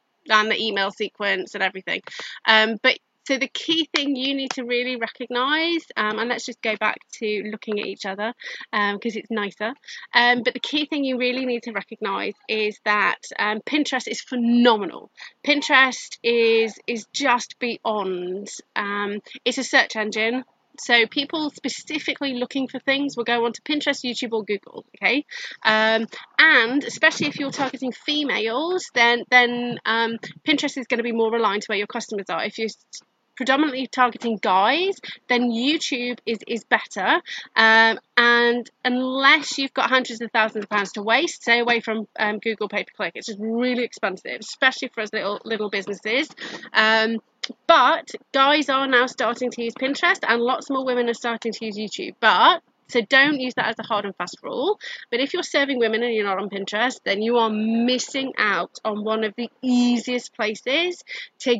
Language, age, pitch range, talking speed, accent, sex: English, 30-49, 220-270 Hz, 180 wpm, British, female